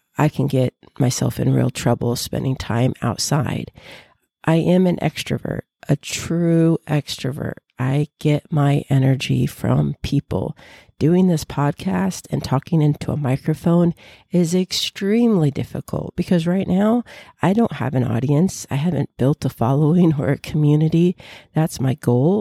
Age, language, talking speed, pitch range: 40-59, English, 140 wpm, 135-165 Hz